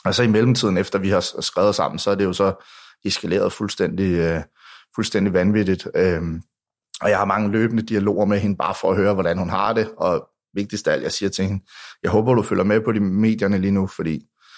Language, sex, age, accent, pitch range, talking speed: Danish, male, 30-49, native, 90-105 Hz, 220 wpm